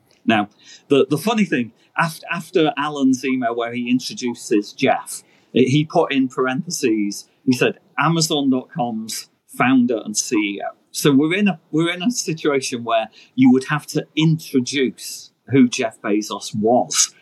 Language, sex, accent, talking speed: English, male, British, 145 wpm